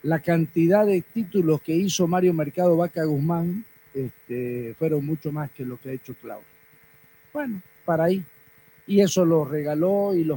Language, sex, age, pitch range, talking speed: Spanish, male, 50-69, 150-190 Hz, 170 wpm